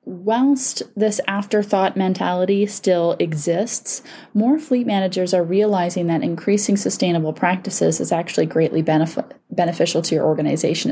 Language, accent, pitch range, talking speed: English, American, 160-205 Hz, 120 wpm